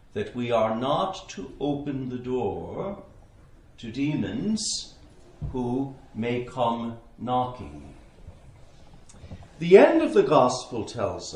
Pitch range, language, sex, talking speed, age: 125-215 Hz, English, male, 105 wpm, 60-79